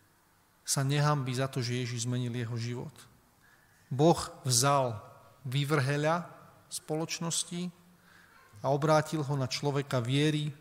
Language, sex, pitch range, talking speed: Slovak, male, 130-170 Hz, 105 wpm